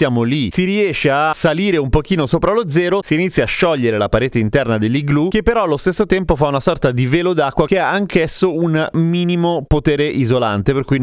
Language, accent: Italian, native